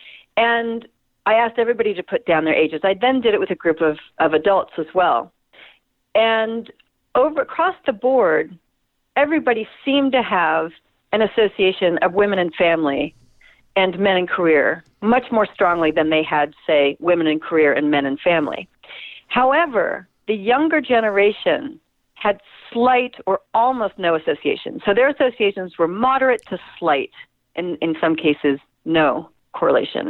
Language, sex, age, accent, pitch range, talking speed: English, female, 50-69, American, 155-230 Hz, 155 wpm